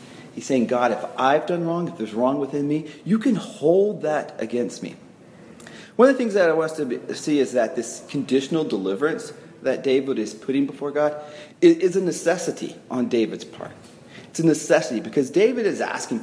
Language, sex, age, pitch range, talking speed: English, male, 40-59, 140-195 Hz, 190 wpm